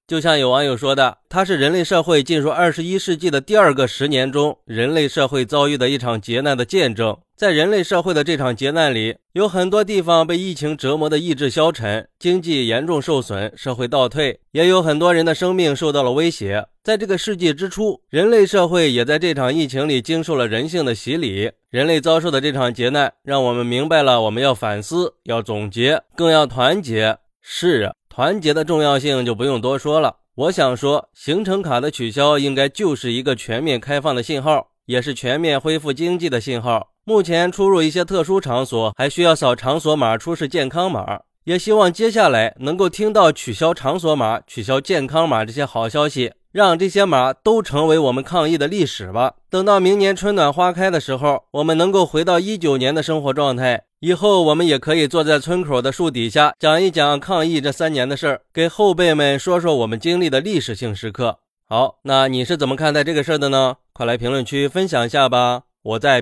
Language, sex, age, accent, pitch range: Chinese, male, 20-39, native, 125-170 Hz